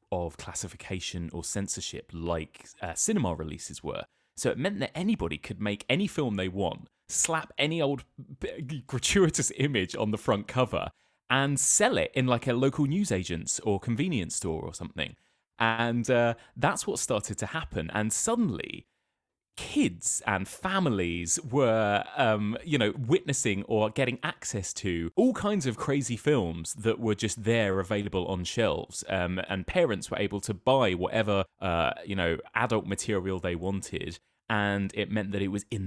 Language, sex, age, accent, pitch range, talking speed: English, male, 20-39, British, 95-130 Hz, 160 wpm